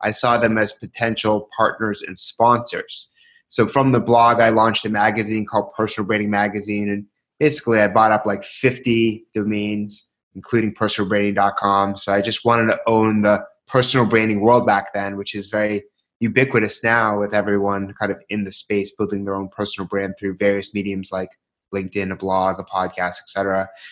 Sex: male